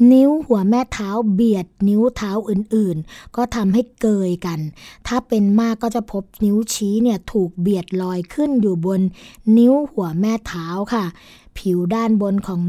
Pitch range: 190-235 Hz